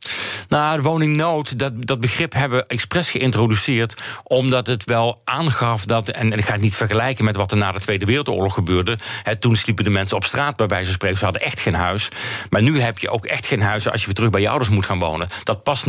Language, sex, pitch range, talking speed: Dutch, male, 105-125 Hz, 245 wpm